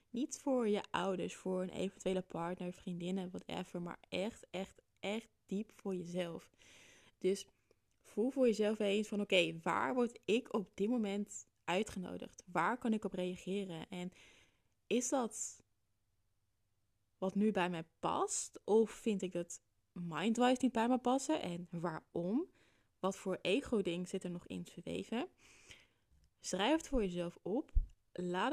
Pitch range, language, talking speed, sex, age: 175-230 Hz, Dutch, 145 wpm, female, 20-39